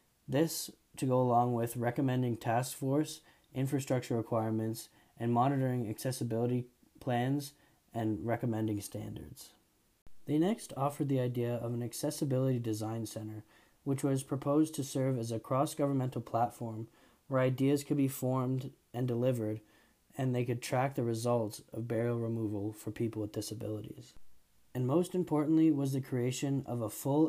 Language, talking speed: English, 145 wpm